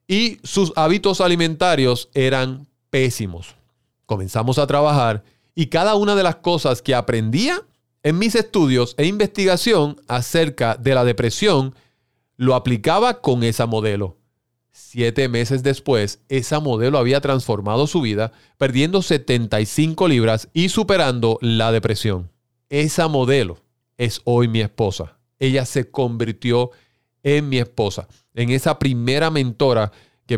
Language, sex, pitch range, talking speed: Spanish, male, 120-150 Hz, 125 wpm